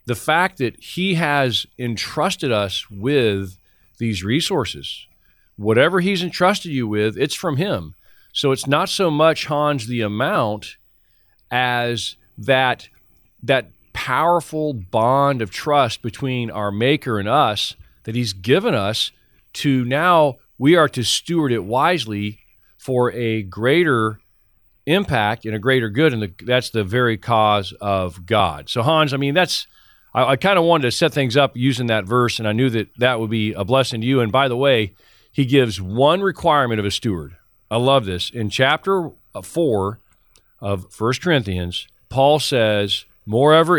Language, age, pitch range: English, 40-59, 105-140 Hz